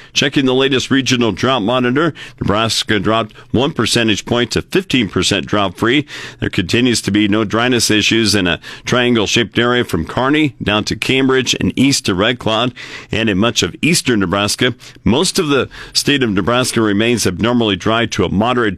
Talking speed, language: 170 wpm, English